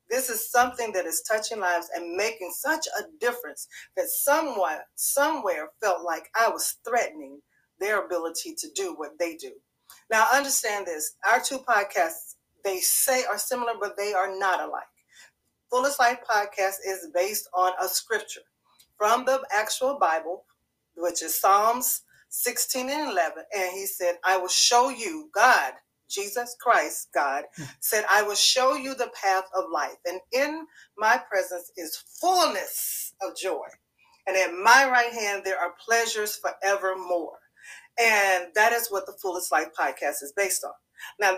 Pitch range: 180-245 Hz